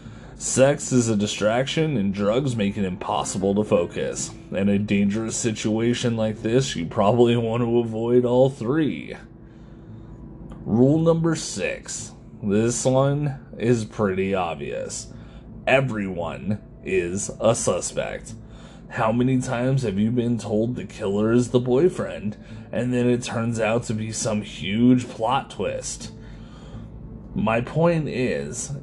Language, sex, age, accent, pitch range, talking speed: English, male, 30-49, American, 100-125 Hz, 130 wpm